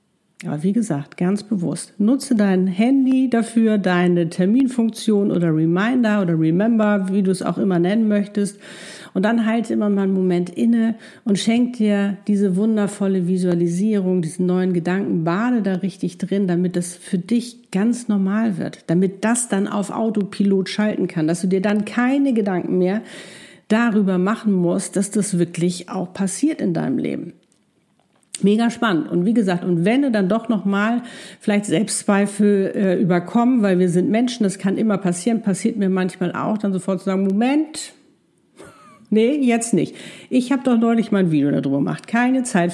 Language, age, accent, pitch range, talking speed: German, 50-69, German, 185-225 Hz, 170 wpm